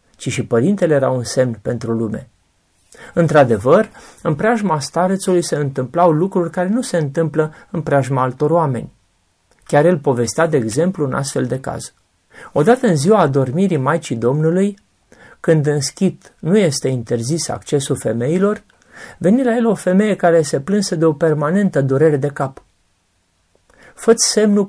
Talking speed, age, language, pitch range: 150 wpm, 30-49, Romanian, 135-180 Hz